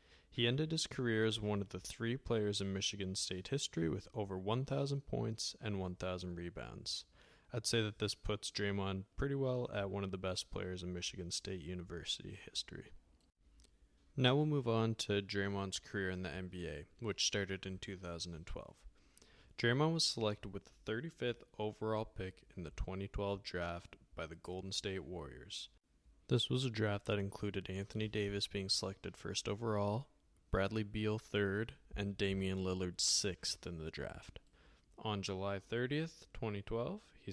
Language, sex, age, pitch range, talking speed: English, male, 20-39, 95-115 Hz, 160 wpm